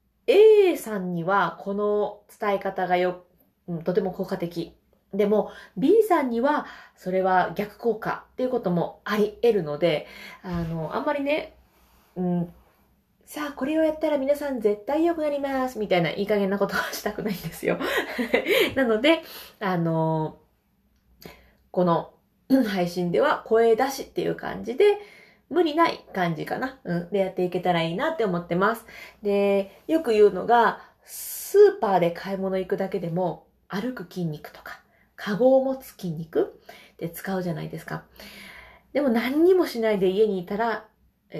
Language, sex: Japanese, female